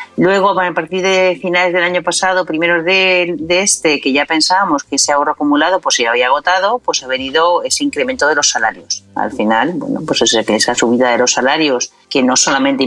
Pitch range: 115-180 Hz